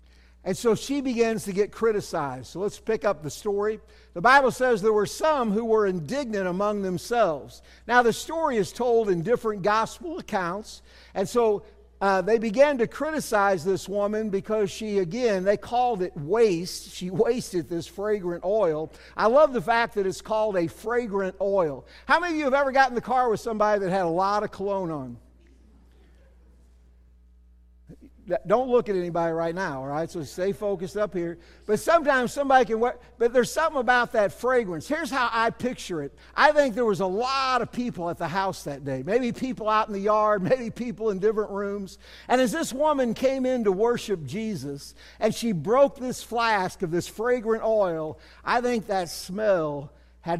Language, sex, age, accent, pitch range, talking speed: English, male, 60-79, American, 170-240 Hz, 190 wpm